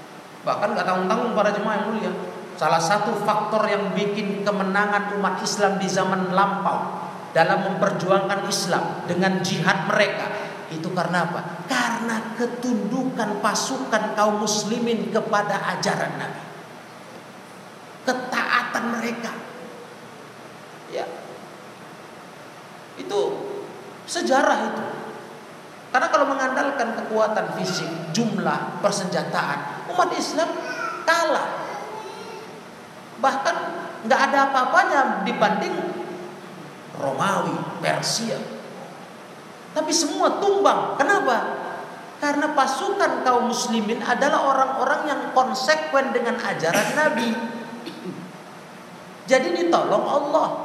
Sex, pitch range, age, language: male, 200-265 Hz, 40-59, Indonesian